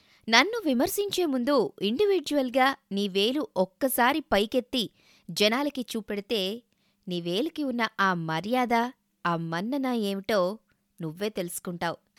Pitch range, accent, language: 195-280 Hz, native, Telugu